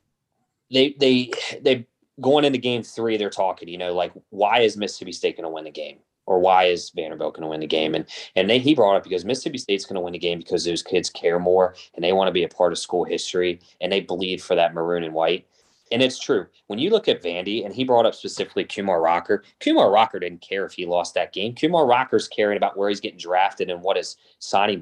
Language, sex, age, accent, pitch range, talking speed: English, male, 30-49, American, 95-145 Hz, 245 wpm